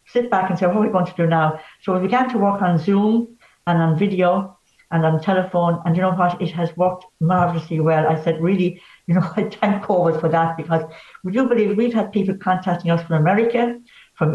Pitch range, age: 165-205 Hz, 60-79